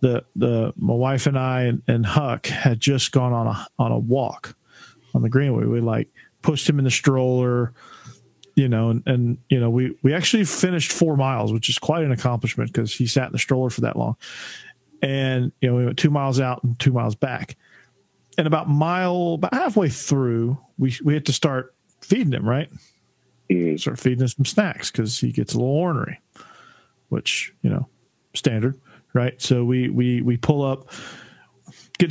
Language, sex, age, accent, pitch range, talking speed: English, male, 40-59, American, 120-145 Hz, 190 wpm